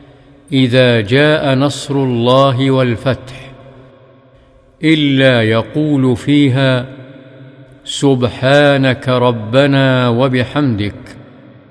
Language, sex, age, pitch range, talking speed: Arabic, male, 50-69, 125-145 Hz, 55 wpm